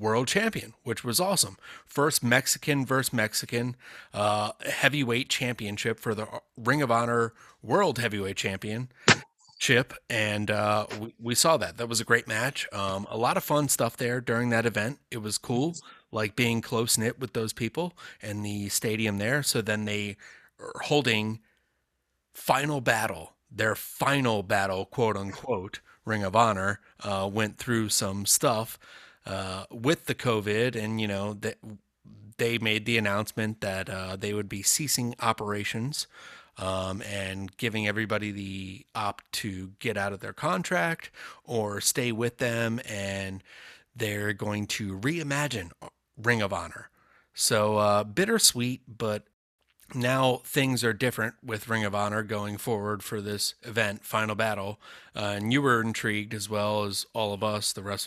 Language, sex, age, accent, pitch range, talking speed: English, male, 30-49, American, 105-120 Hz, 155 wpm